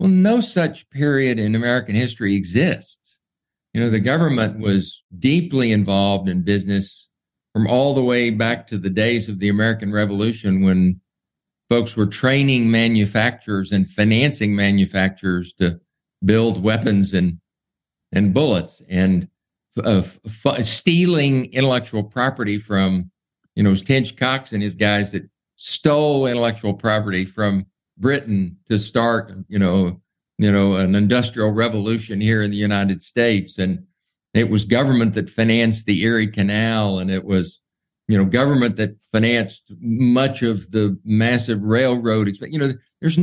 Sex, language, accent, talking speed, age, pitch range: male, English, American, 145 wpm, 60-79, 100-120 Hz